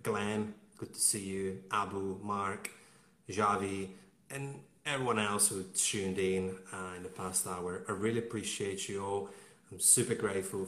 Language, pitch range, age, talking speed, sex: English, 95-115 Hz, 30-49, 150 wpm, male